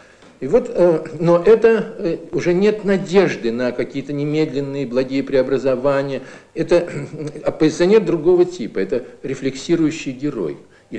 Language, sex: Russian, male